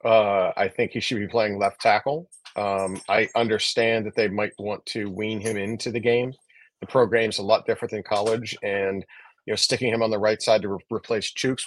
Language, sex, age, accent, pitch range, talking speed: English, male, 40-59, American, 100-115 Hz, 215 wpm